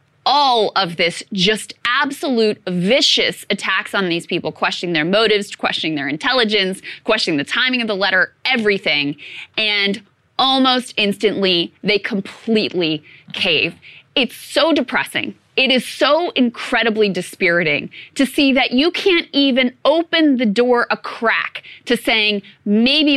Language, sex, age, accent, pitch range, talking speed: English, female, 20-39, American, 185-250 Hz, 130 wpm